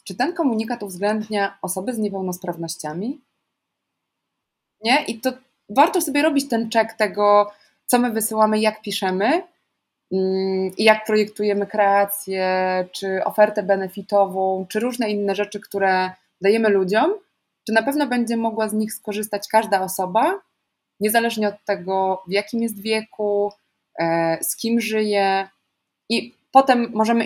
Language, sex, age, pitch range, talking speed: Polish, female, 20-39, 190-230 Hz, 130 wpm